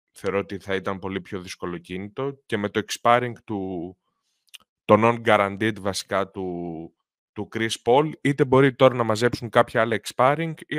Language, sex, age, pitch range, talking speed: Greek, male, 20-39, 95-125 Hz, 150 wpm